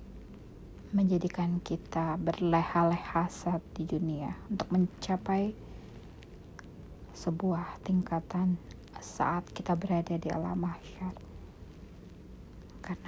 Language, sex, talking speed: Indonesian, female, 80 wpm